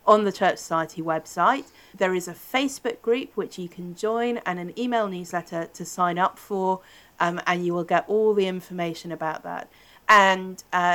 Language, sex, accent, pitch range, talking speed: English, female, British, 165-205 Hz, 180 wpm